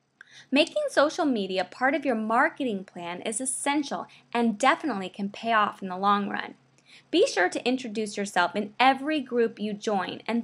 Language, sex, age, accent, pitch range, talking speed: English, female, 20-39, American, 205-275 Hz, 170 wpm